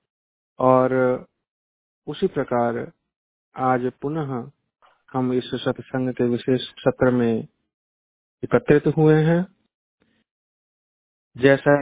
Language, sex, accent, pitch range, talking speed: Hindi, male, native, 125-140 Hz, 80 wpm